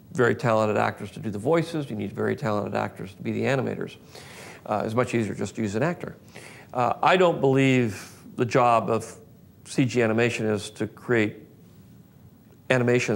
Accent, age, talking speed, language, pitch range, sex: American, 50-69, 175 wpm, English, 110-125 Hz, male